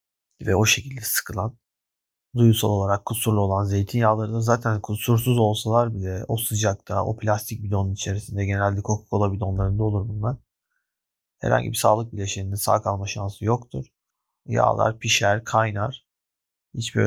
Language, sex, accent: Turkish, male, native